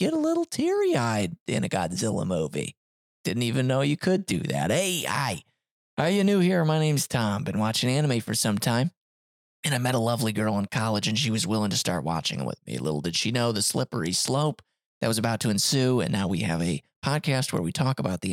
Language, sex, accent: English, male, American